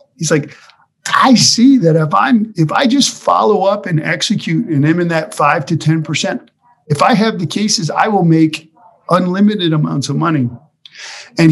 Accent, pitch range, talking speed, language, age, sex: American, 145-180 Hz, 175 wpm, English, 50-69, male